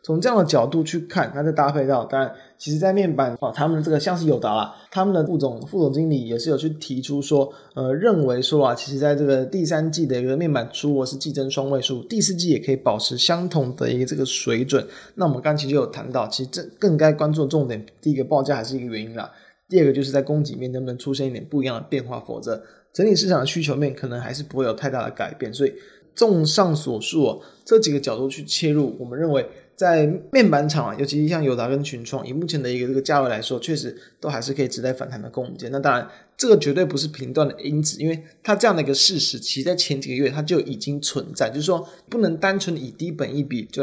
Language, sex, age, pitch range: Chinese, male, 20-39, 135-160 Hz